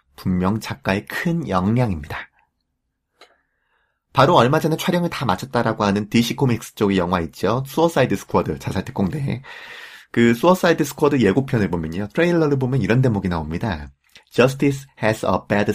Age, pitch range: 30-49, 90-130 Hz